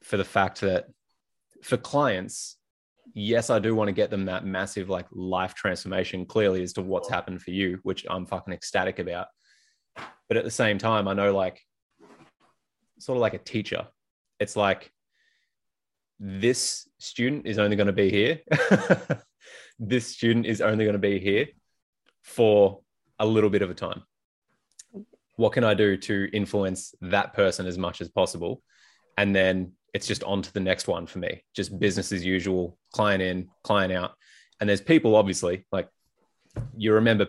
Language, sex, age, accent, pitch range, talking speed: English, male, 20-39, Australian, 95-105 Hz, 170 wpm